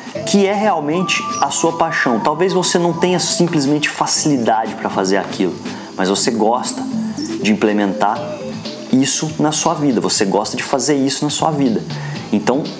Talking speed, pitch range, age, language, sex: 155 wpm, 115-155 Hz, 20-39, Portuguese, male